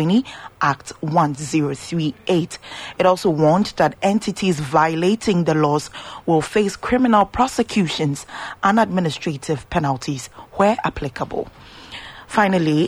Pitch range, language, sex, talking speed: 155-195 Hz, English, female, 95 wpm